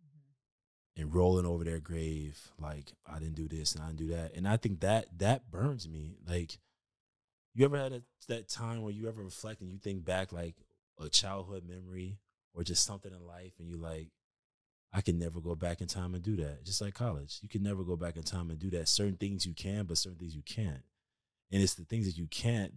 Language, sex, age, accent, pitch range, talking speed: English, male, 20-39, American, 80-100 Hz, 230 wpm